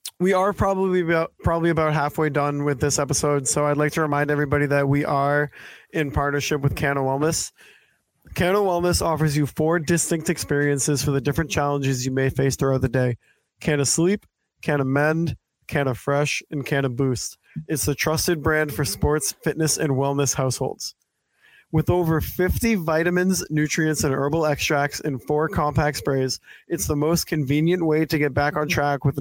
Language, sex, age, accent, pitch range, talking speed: English, male, 20-39, American, 140-155 Hz, 170 wpm